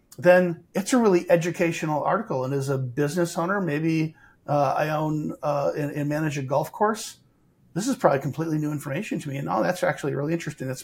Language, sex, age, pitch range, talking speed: English, male, 50-69, 140-170 Hz, 205 wpm